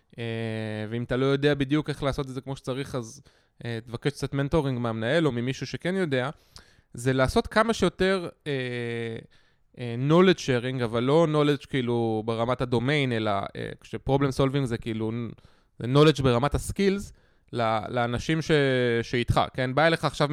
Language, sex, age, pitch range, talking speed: Hebrew, male, 20-39, 120-160 Hz, 155 wpm